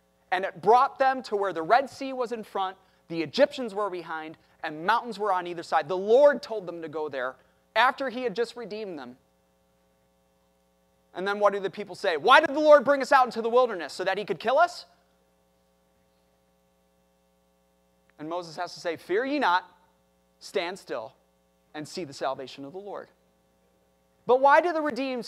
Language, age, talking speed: English, 30-49, 190 wpm